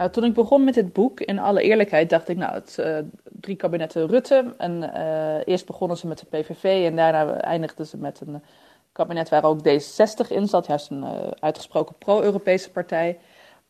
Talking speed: 195 wpm